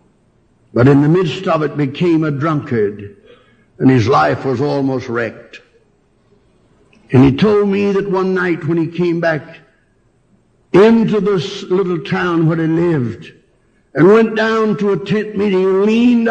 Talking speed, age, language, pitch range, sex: 155 wpm, 60-79, English, 160-220 Hz, male